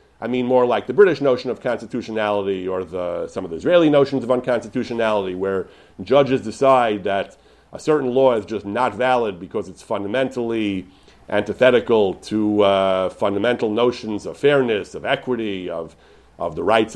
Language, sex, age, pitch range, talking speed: English, male, 40-59, 100-135 Hz, 160 wpm